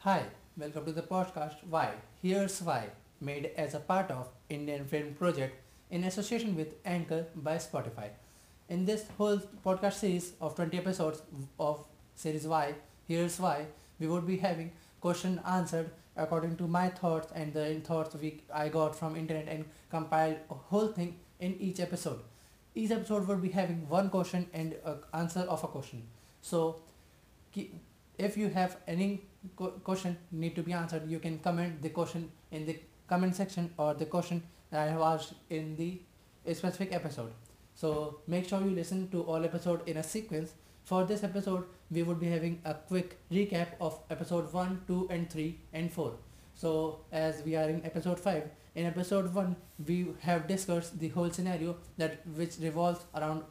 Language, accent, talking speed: English, Indian, 170 wpm